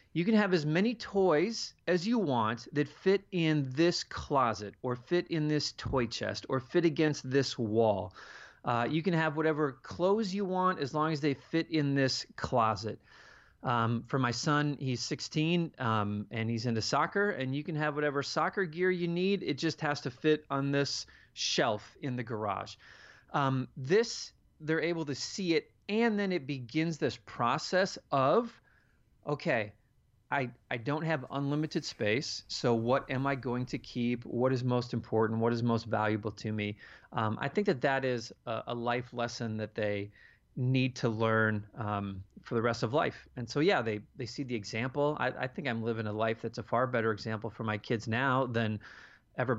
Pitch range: 110-150 Hz